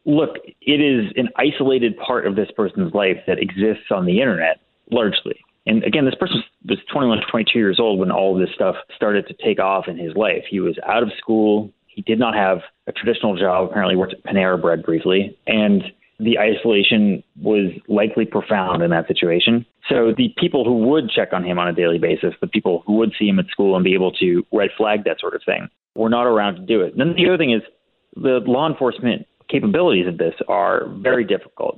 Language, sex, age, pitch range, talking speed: English, male, 30-49, 95-130 Hz, 220 wpm